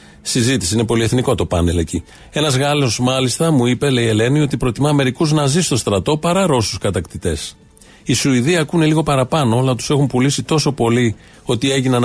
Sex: male